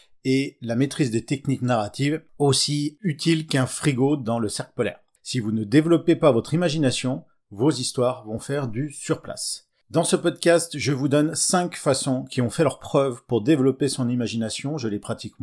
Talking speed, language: 185 wpm, French